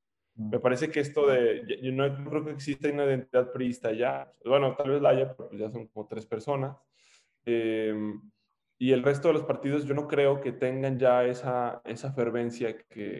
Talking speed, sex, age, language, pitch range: 190 wpm, male, 10-29, Spanish, 110-130 Hz